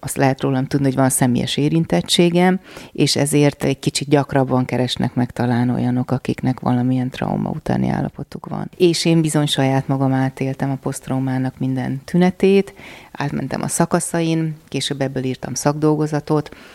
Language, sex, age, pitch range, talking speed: Hungarian, female, 30-49, 135-165 Hz, 145 wpm